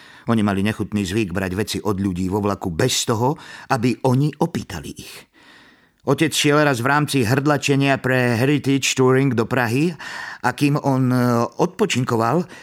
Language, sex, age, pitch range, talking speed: Slovak, male, 50-69, 100-135 Hz, 145 wpm